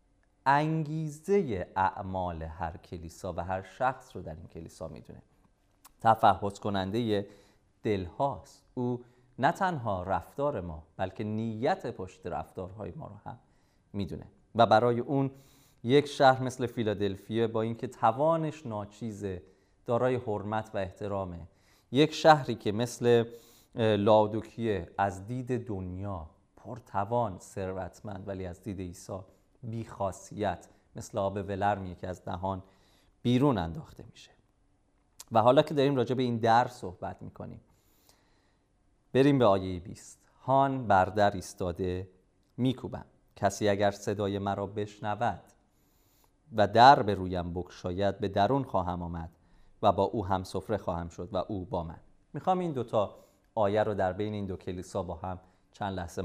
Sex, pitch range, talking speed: male, 95-120 Hz, 135 wpm